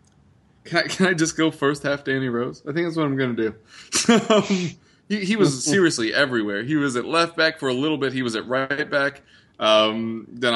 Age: 20-39